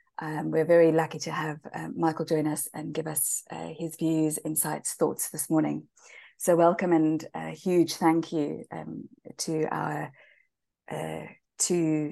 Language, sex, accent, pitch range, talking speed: English, female, British, 155-175 Hz, 160 wpm